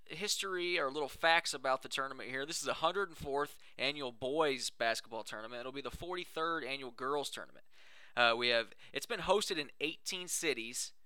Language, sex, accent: English, male, American